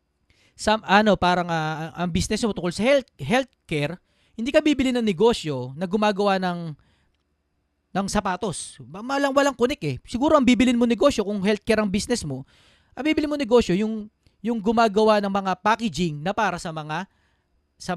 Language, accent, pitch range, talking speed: Filipino, native, 150-240 Hz, 165 wpm